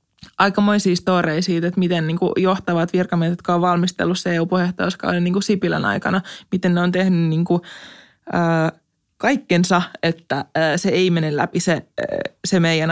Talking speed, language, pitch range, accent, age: 155 wpm, Finnish, 175-210 Hz, native, 20-39